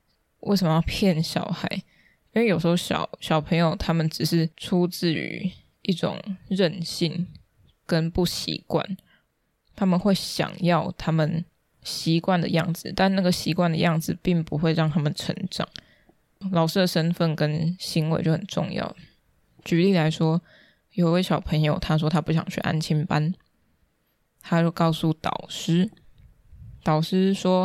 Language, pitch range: Chinese, 160-180 Hz